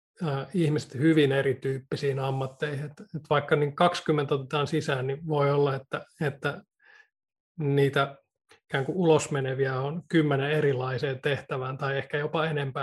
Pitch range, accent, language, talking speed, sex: 140-155 Hz, native, Finnish, 115 wpm, male